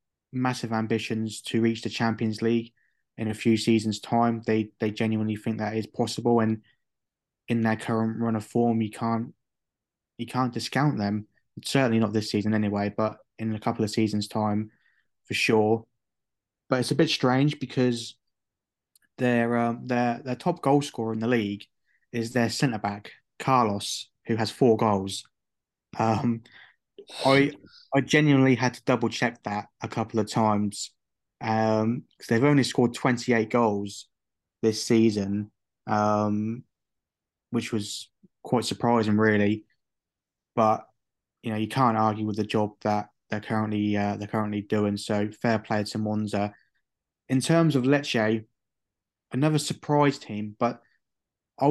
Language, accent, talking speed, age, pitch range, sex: English, British, 150 wpm, 20-39, 105-120 Hz, male